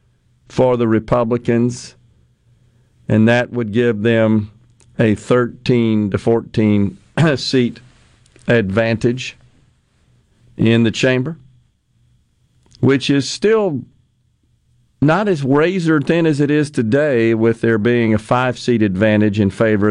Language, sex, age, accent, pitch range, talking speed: English, male, 50-69, American, 115-135 Hz, 105 wpm